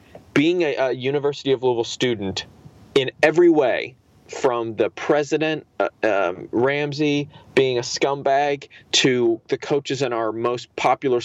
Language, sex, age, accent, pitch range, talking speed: English, male, 20-39, American, 115-170 Hz, 140 wpm